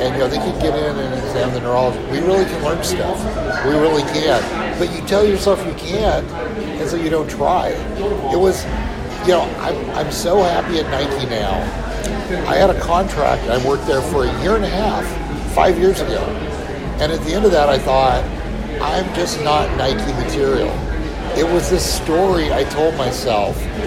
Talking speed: 195 wpm